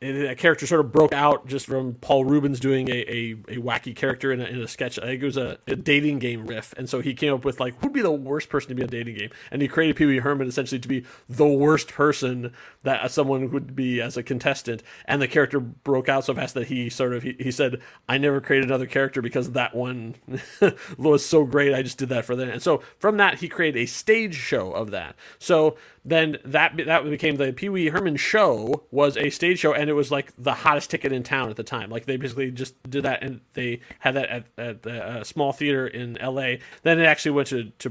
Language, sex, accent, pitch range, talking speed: English, male, American, 125-150 Hz, 255 wpm